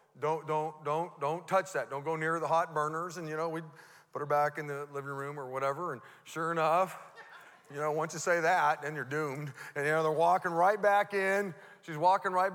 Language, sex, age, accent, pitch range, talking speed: English, male, 40-59, American, 160-245 Hz, 230 wpm